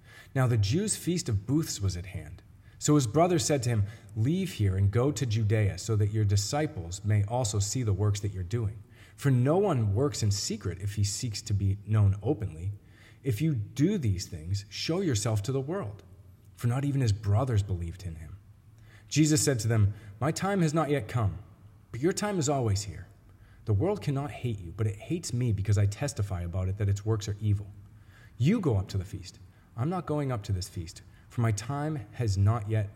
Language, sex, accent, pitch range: English, male, American, 100-125 Hz